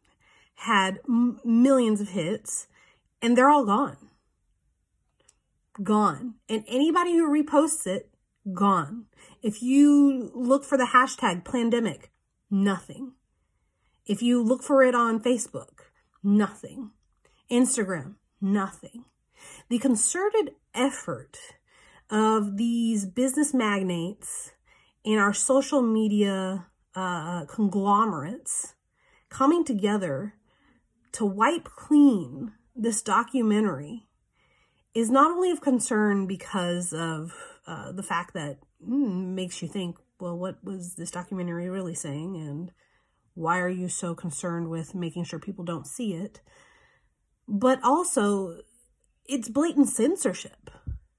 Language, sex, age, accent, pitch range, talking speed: English, female, 40-59, American, 185-250 Hz, 110 wpm